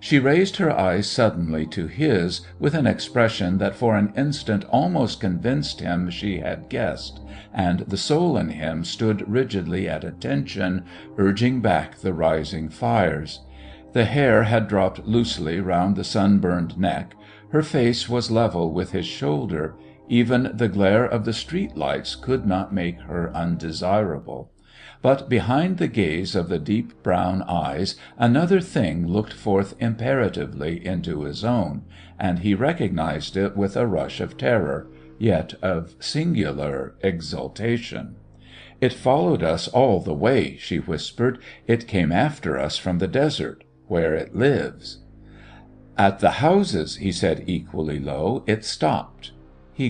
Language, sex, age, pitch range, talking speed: English, male, 60-79, 85-115 Hz, 145 wpm